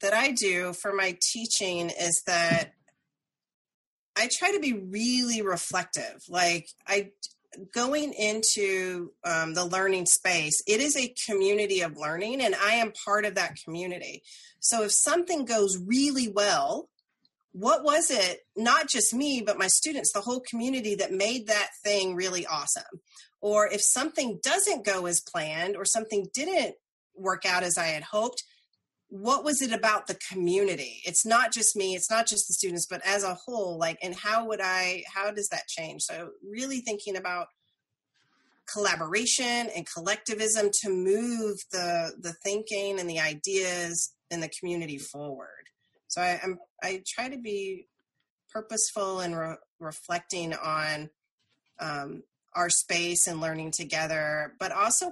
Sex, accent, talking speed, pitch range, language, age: female, American, 155 wpm, 175-225 Hz, English, 30-49